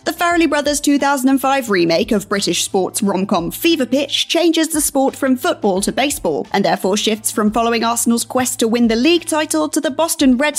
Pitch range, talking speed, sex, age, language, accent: 210-280 Hz, 195 wpm, female, 30-49, English, British